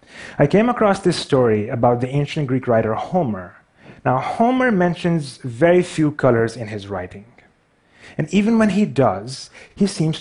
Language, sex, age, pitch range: Chinese, male, 30-49, 115-150 Hz